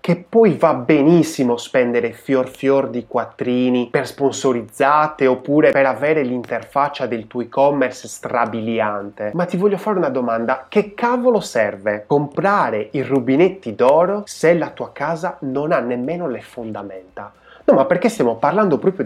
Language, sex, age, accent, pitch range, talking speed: Italian, male, 20-39, native, 120-180 Hz, 150 wpm